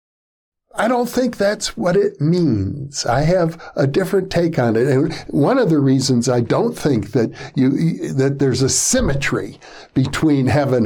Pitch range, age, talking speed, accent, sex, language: 120-160 Hz, 60-79, 165 wpm, American, male, English